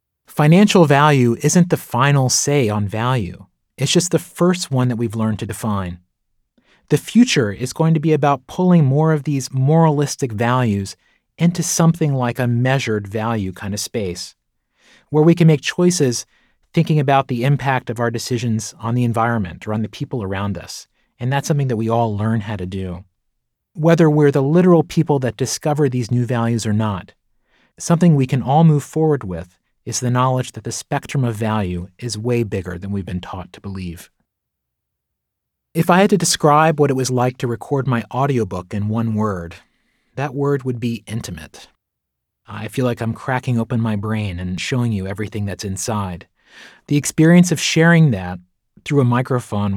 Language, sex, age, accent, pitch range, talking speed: English, male, 30-49, American, 105-145 Hz, 180 wpm